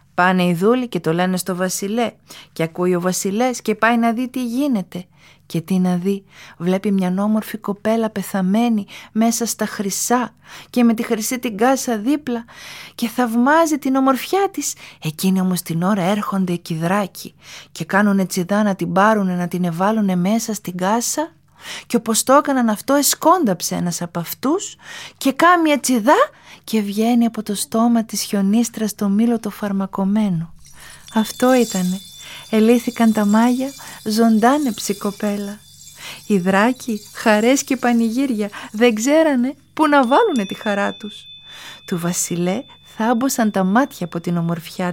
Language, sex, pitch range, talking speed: Greek, female, 180-235 Hz, 150 wpm